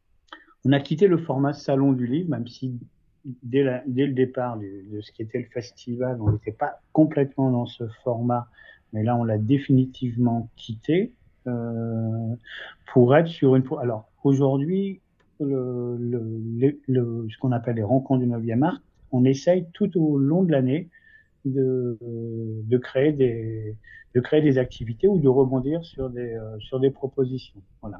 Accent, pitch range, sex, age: French, 115-140 Hz, male, 50-69